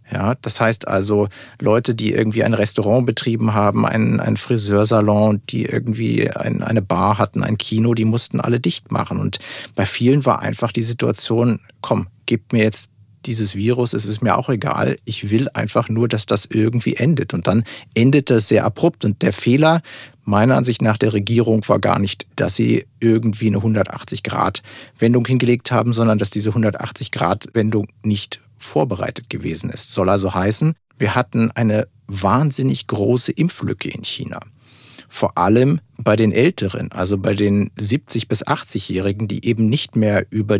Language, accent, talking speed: German, German, 165 wpm